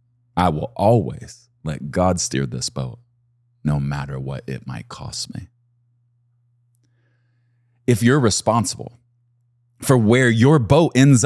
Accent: American